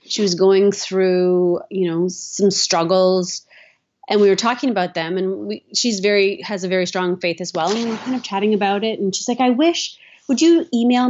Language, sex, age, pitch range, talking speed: English, female, 30-49, 180-225 Hz, 220 wpm